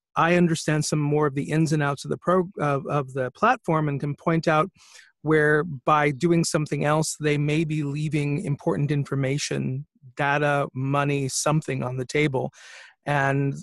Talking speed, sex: 165 wpm, male